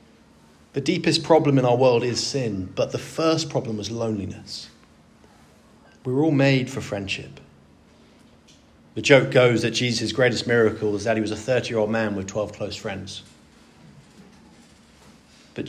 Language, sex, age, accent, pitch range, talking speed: English, male, 30-49, British, 110-145 Hz, 150 wpm